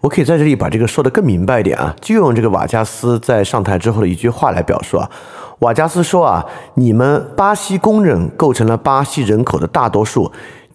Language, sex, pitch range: Chinese, male, 105-150 Hz